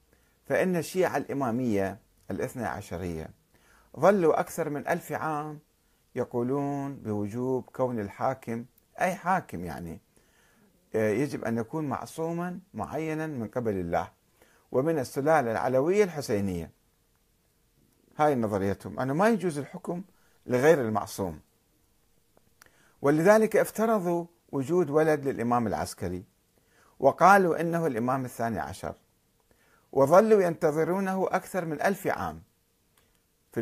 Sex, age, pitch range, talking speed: male, 50-69, 110-155 Hz, 100 wpm